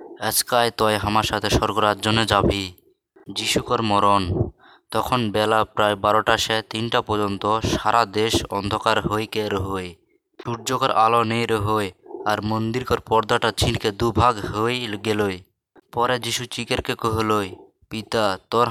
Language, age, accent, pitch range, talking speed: English, 20-39, Indian, 105-115 Hz, 120 wpm